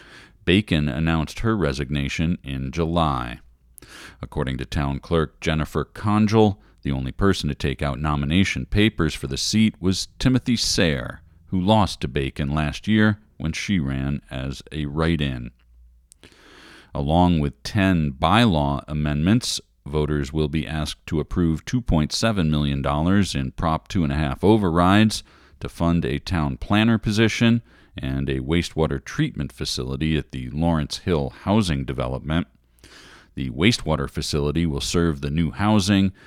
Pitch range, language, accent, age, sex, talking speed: 70-95 Hz, English, American, 40-59, male, 130 wpm